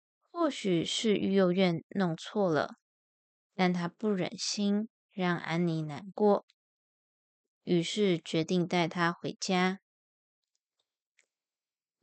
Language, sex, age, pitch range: Chinese, female, 20-39, 175-210 Hz